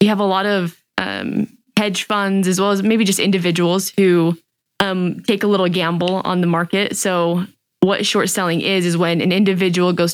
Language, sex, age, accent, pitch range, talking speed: English, female, 20-39, American, 170-190 Hz, 195 wpm